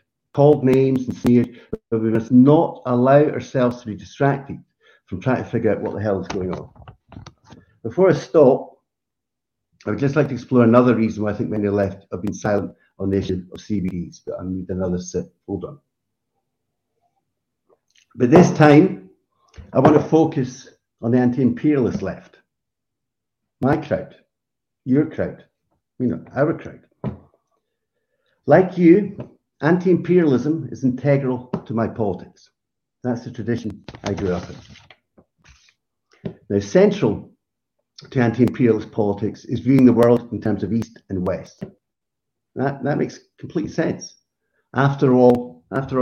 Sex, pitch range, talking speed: male, 105-135 Hz, 145 wpm